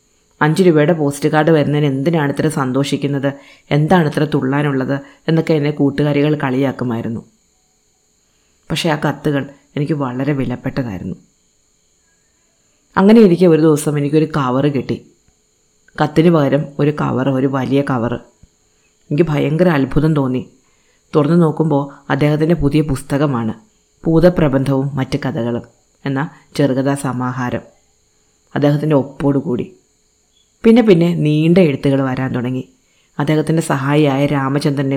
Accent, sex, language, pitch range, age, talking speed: native, female, Malayalam, 135-155 Hz, 20-39, 100 wpm